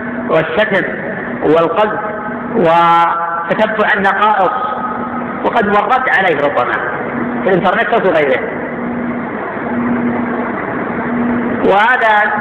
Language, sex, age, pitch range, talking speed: Arabic, female, 50-69, 215-245 Hz, 65 wpm